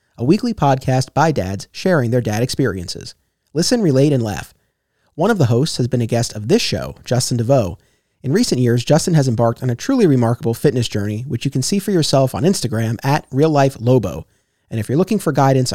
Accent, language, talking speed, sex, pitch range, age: American, English, 210 wpm, male, 120-160 Hz, 30-49